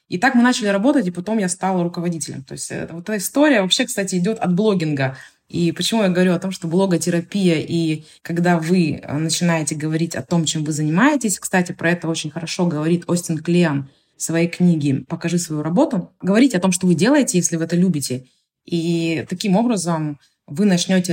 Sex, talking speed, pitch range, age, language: female, 190 wpm, 160-195 Hz, 20-39, Russian